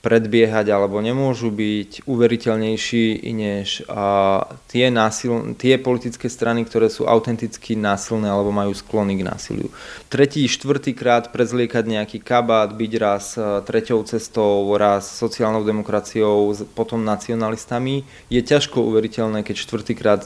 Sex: male